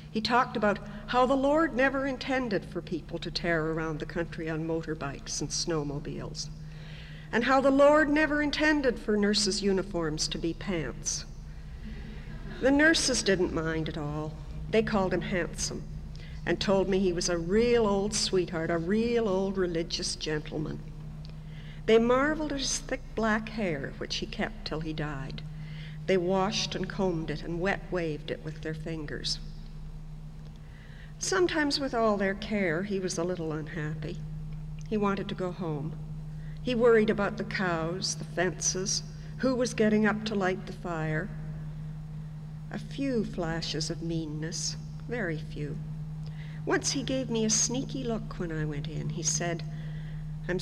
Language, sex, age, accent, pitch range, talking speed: English, female, 60-79, American, 155-195 Hz, 155 wpm